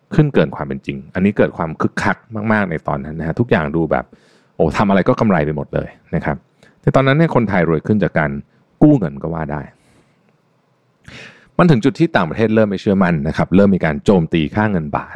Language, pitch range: Thai, 75-115 Hz